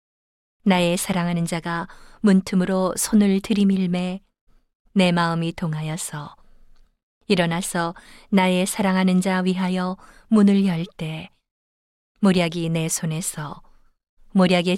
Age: 40-59